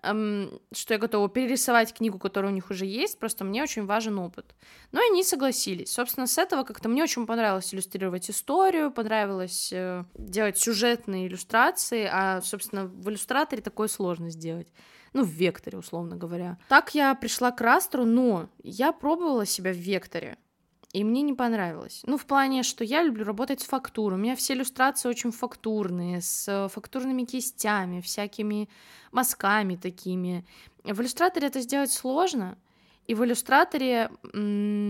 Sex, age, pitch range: female, 20-39, 200-255 Hz